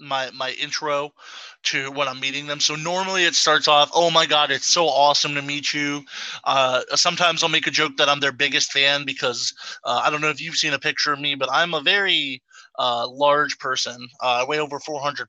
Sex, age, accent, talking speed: male, 20-39, American, 220 wpm